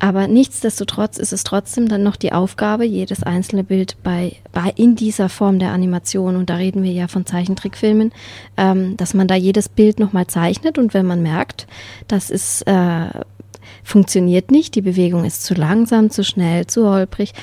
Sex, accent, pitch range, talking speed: female, German, 190-230 Hz, 180 wpm